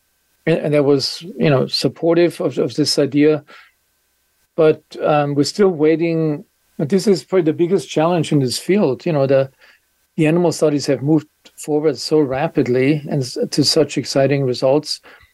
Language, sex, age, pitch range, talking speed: English, male, 50-69, 130-155 Hz, 160 wpm